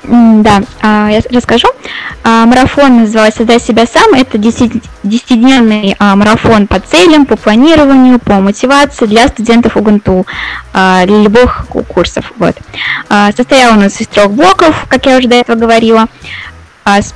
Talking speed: 135 wpm